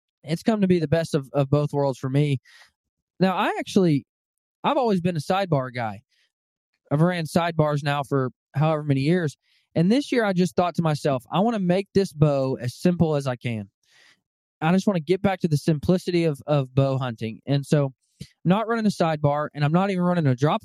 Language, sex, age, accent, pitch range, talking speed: English, male, 20-39, American, 130-175 Hz, 215 wpm